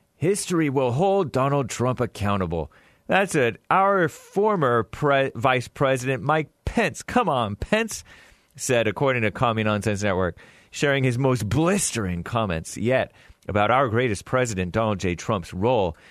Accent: American